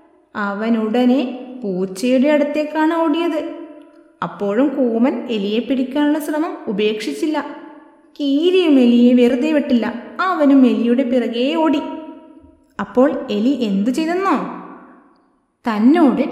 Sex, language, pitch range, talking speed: female, Malayalam, 250-315 Hz, 85 wpm